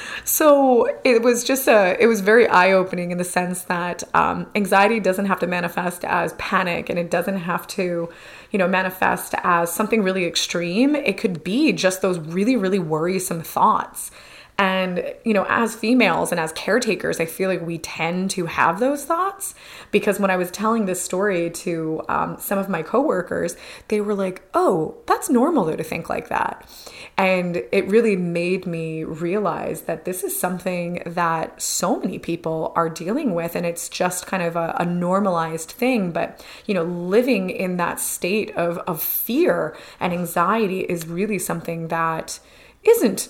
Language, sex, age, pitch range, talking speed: English, female, 20-39, 175-215 Hz, 175 wpm